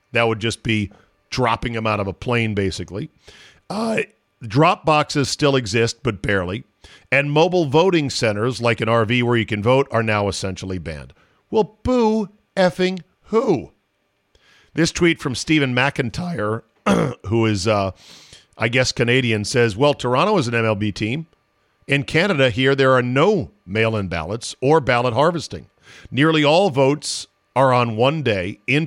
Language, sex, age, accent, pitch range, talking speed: English, male, 50-69, American, 115-155 Hz, 155 wpm